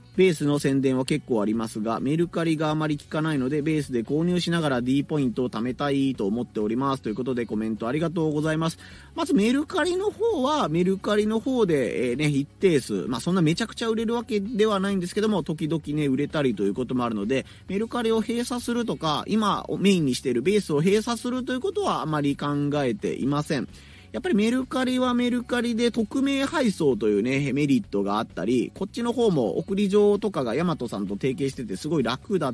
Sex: male